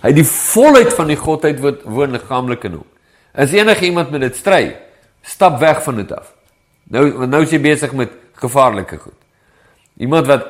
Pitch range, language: 125-170 Hz, English